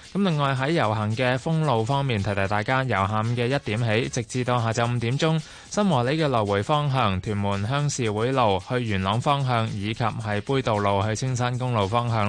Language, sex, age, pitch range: Chinese, male, 20-39, 105-135 Hz